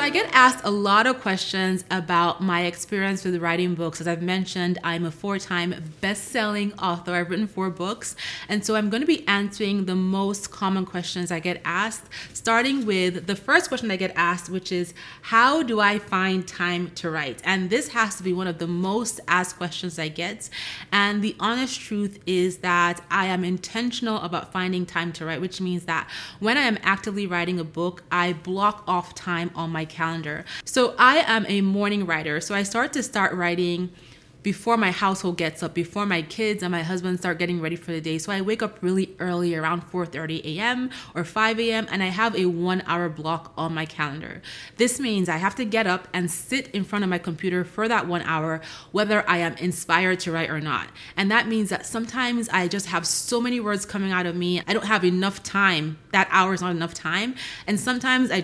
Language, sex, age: English, female, 30-49